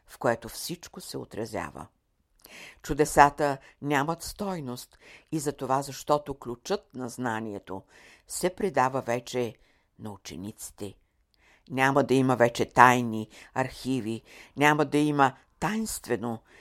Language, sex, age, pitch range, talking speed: Bulgarian, female, 60-79, 110-140 Hz, 110 wpm